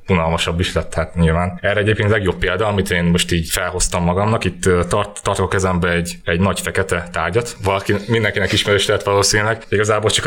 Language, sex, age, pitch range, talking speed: Hungarian, male, 20-39, 90-110 Hz, 185 wpm